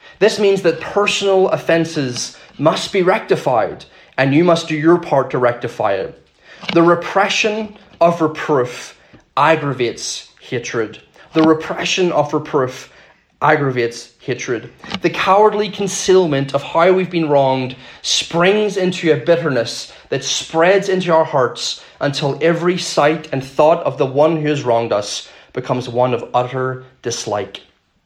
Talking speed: 135 wpm